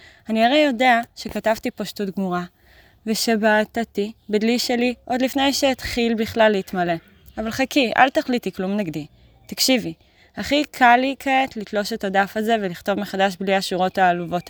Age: 20-39